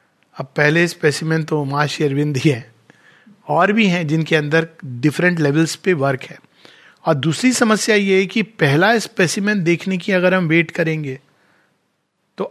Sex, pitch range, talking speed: male, 150-190 Hz, 140 wpm